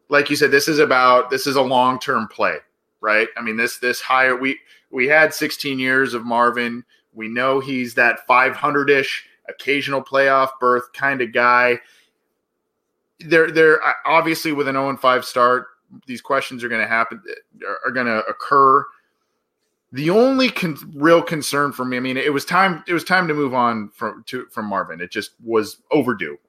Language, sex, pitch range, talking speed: English, male, 110-145 Hz, 190 wpm